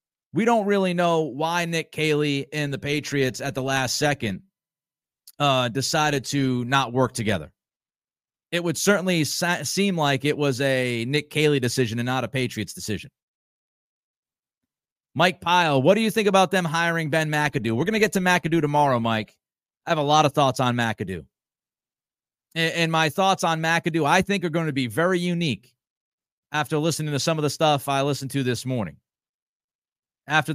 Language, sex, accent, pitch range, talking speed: English, male, American, 140-175 Hz, 180 wpm